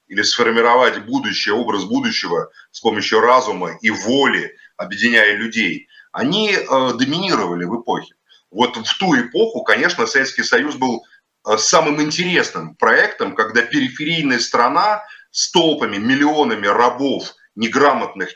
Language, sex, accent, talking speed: Russian, male, native, 115 wpm